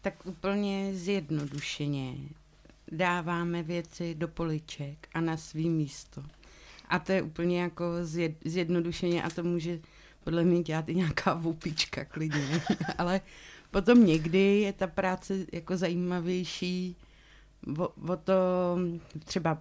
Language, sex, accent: Czech, female, native